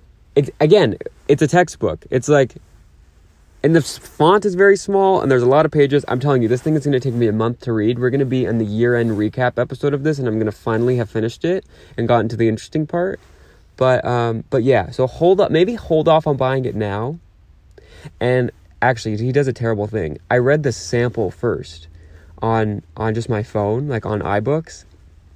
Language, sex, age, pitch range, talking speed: English, male, 20-39, 95-130 Hz, 220 wpm